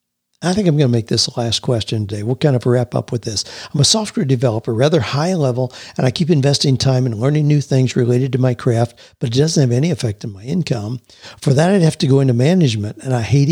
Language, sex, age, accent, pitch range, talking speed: English, male, 60-79, American, 120-145 Hz, 260 wpm